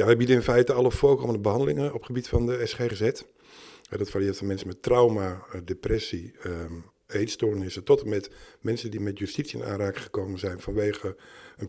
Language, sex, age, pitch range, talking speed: Dutch, male, 50-69, 100-125 Hz, 185 wpm